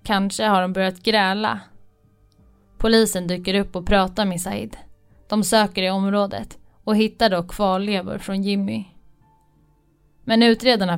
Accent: native